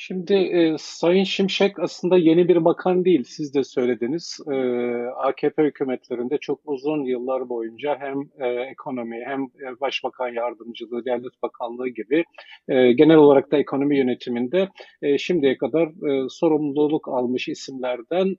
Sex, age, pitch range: male, 50-69, 135-180 Hz